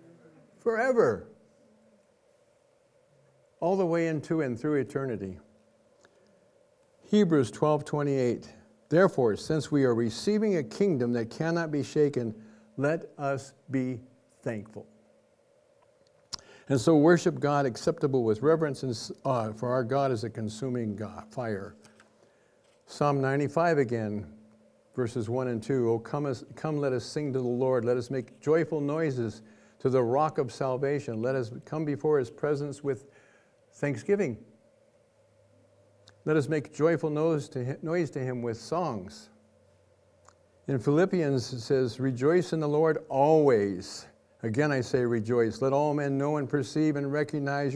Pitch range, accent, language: 120-155 Hz, American, English